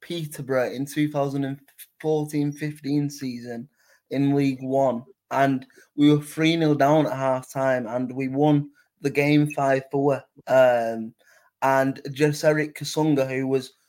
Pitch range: 130-150 Hz